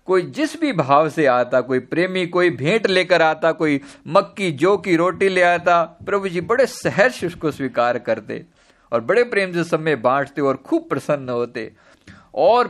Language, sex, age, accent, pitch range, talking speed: Hindi, male, 50-69, native, 135-180 Hz, 180 wpm